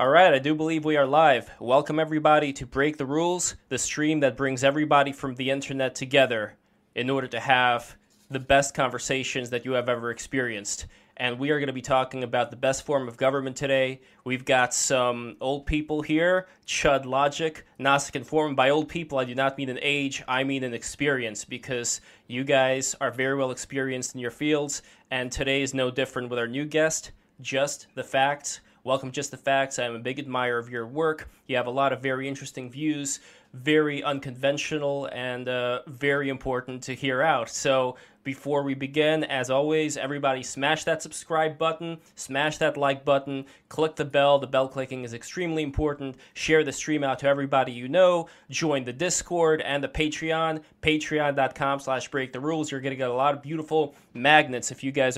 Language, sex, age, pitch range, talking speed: English, male, 20-39, 130-150 Hz, 190 wpm